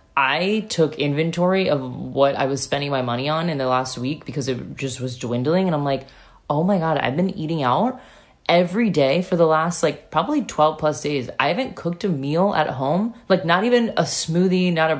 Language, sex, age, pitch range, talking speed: English, female, 20-39, 135-170 Hz, 215 wpm